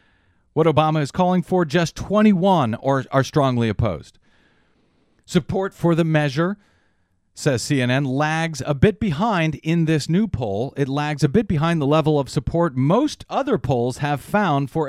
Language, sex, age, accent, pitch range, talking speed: English, male, 40-59, American, 130-170 Hz, 160 wpm